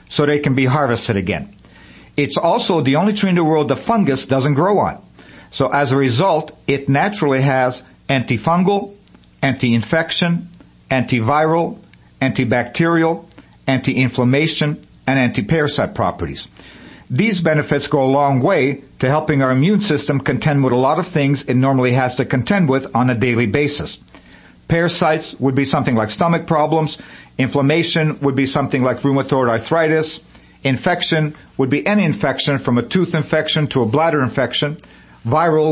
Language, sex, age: English, male, 50-69